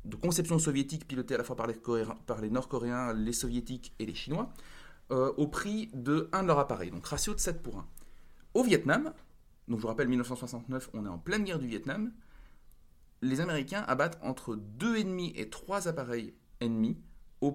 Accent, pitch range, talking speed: French, 115-175 Hz, 190 wpm